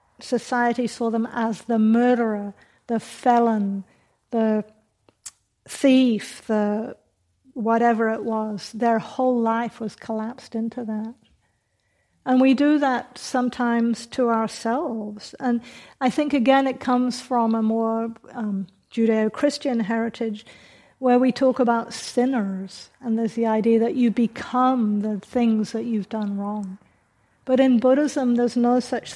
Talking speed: 130 wpm